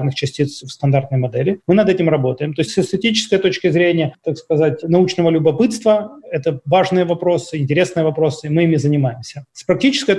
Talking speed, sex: 175 wpm, male